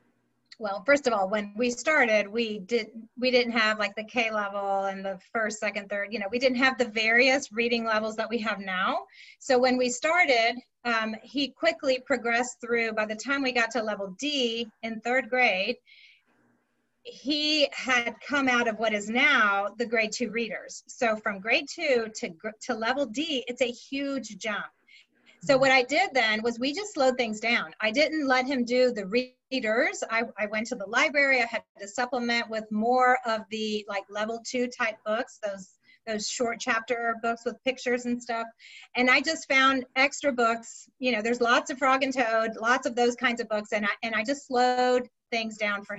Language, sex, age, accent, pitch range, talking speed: English, female, 30-49, American, 220-265 Hz, 195 wpm